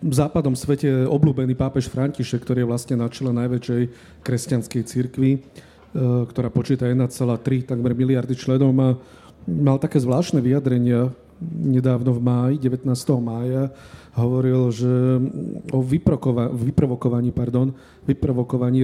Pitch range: 125-140 Hz